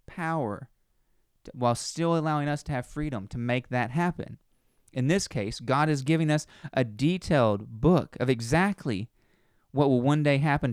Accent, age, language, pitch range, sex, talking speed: American, 20-39, English, 115-150 Hz, male, 170 wpm